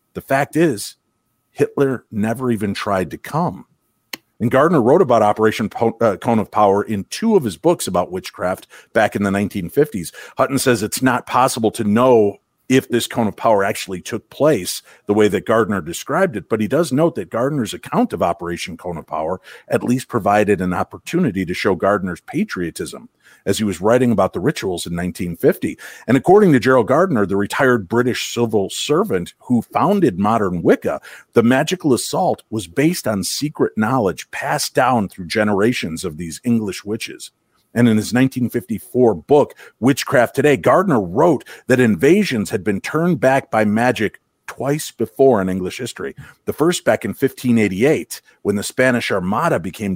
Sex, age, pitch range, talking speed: male, 50-69, 95-125 Hz, 170 wpm